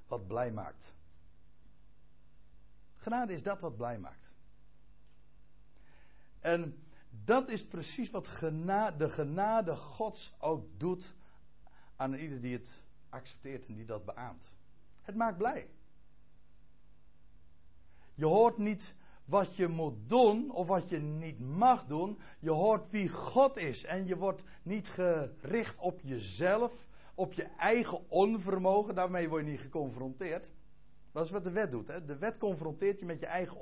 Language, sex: Dutch, male